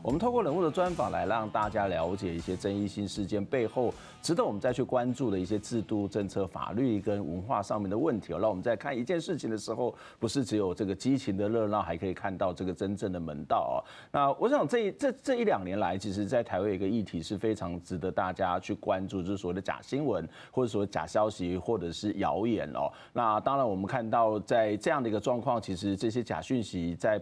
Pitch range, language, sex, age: 95-130 Hz, Chinese, male, 30-49